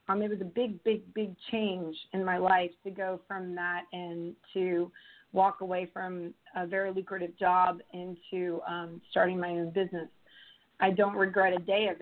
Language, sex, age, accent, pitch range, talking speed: English, female, 30-49, American, 180-200 Hz, 175 wpm